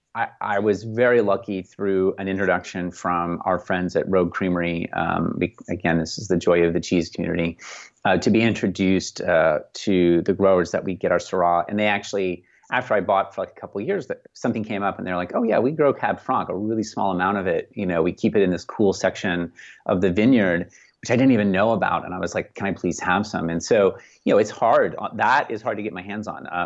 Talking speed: 250 wpm